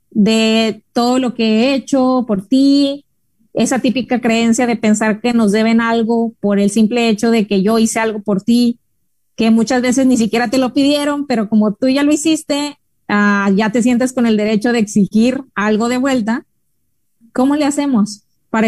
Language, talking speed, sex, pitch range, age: Spanish, 185 wpm, female, 210-245 Hz, 20-39